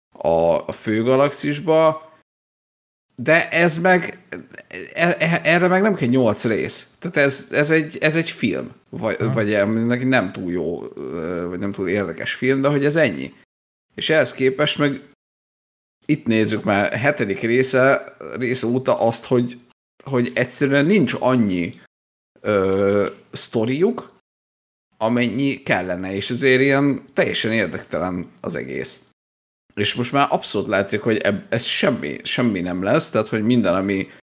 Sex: male